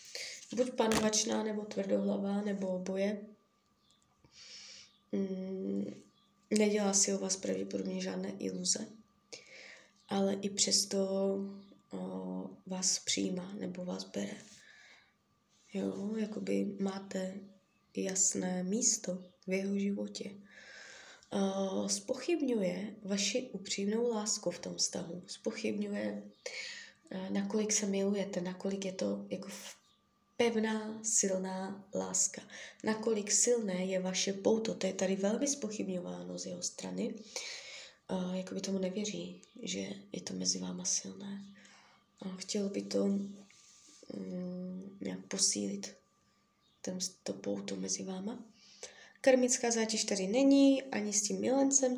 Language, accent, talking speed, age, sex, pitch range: Czech, native, 105 wpm, 20-39, female, 180-215 Hz